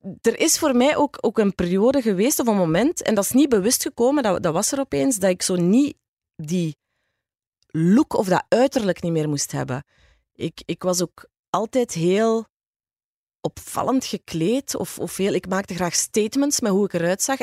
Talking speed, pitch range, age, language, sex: 195 wpm, 150-230 Hz, 30-49, Dutch, female